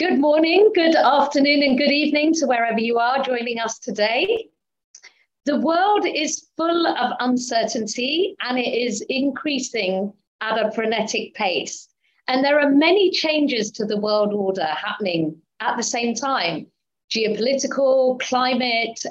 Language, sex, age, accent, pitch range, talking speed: English, female, 40-59, British, 225-300 Hz, 140 wpm